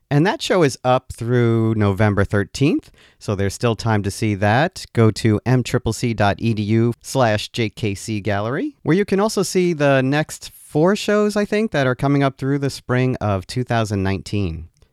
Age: 40-59